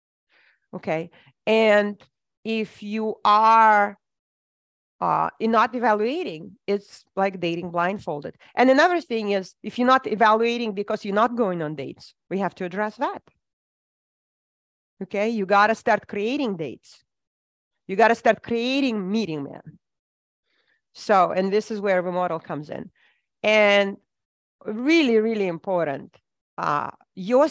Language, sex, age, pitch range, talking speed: English, female, 40-59, 170-220 Hz, 125 wpm